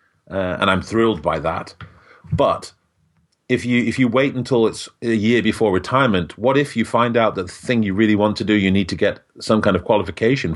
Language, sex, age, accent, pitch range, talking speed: English, male, 40-59, British, 90-115 Hz, 215 wpm